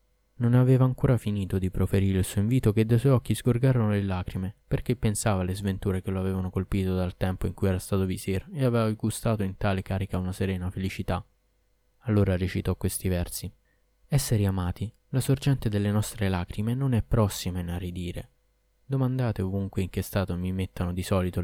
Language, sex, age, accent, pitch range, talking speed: Italian, male, 20-39, native, 95-120 Hz, 180 wpm